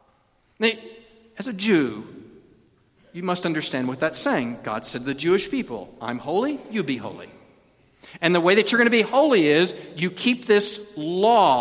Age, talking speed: 50-69, 175 wpm